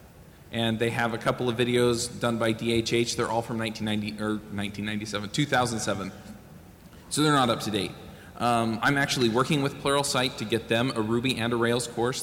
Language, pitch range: English, 110-125 Hz